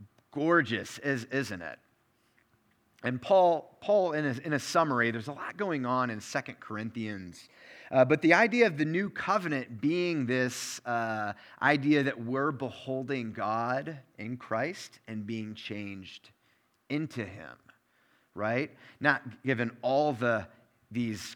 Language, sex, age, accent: English, male, 30-49, American